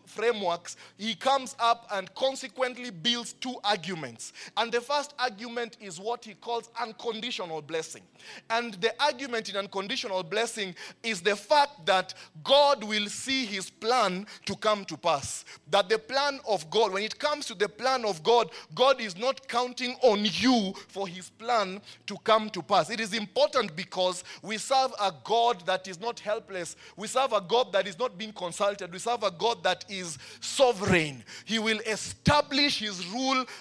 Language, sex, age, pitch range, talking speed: English, male, 30-49, 195-240 Hz, 175 wpm